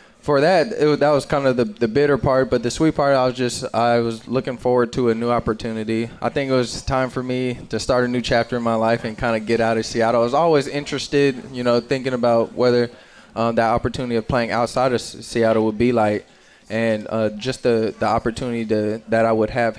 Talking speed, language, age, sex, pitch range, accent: 240 wpm, English, 20-39, male, 115-130 Hz, American